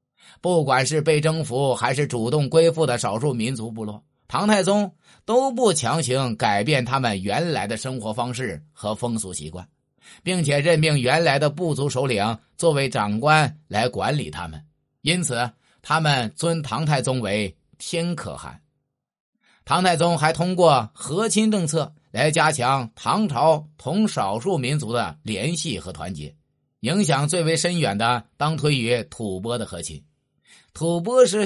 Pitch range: 115-165 Hz